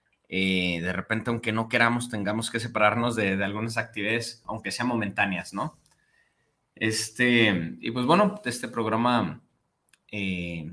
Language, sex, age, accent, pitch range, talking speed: Spanish, male, 20-39, Mexican, 100-125 Hz, 135 wpm